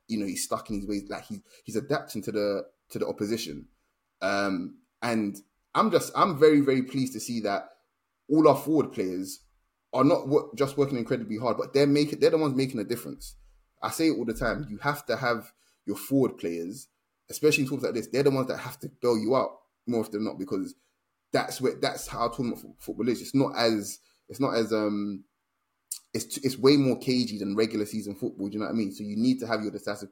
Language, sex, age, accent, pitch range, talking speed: English, male, 20-39, British, 100-130 Hz, 225 wpm